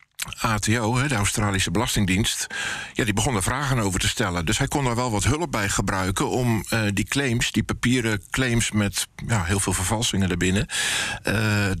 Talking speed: 180 wpm